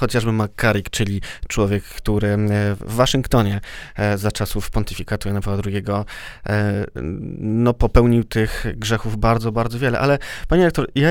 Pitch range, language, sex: 110-135 Hz, Polish, male